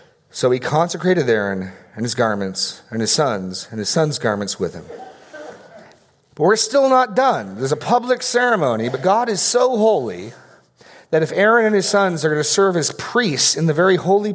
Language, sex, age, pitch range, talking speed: English, male, 40-59, 110-155 Hz, 190 wpm